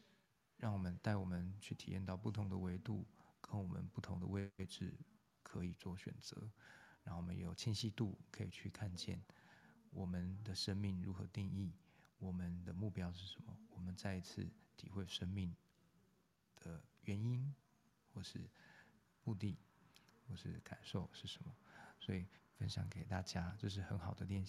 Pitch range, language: 95-110 Hz, Chinese